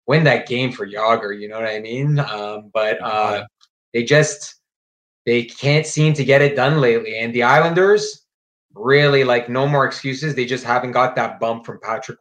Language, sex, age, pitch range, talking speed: English, male, 20-39, 115-145 Hz, 190 wpm